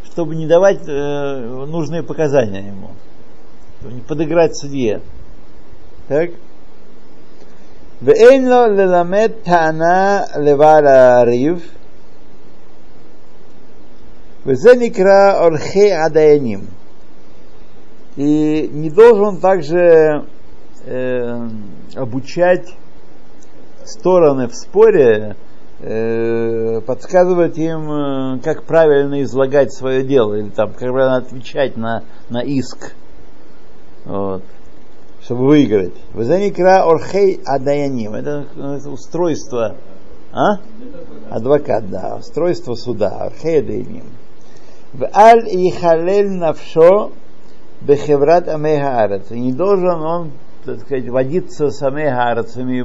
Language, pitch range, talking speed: Russian, 130-175 Hz, 65 wpm